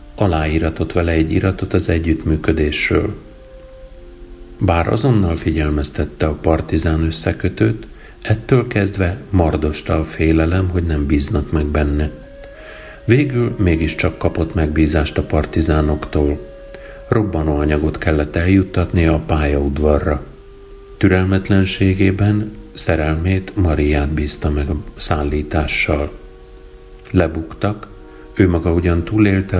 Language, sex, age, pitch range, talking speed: Hungarian, male, 50-69, 75-100 Hz, 90 wpm